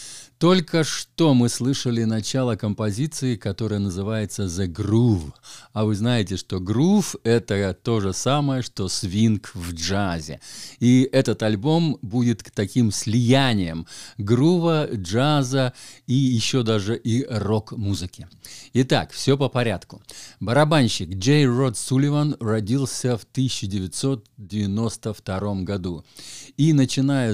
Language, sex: Russian, male